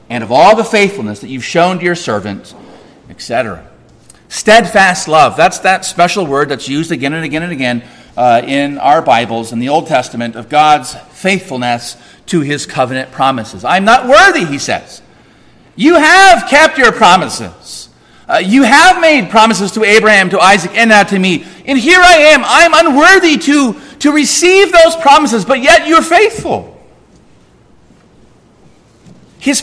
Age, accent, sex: 40-59, American, male